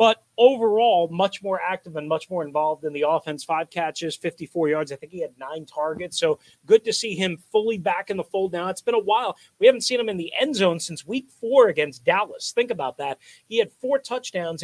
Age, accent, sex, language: 40-59, American, male, English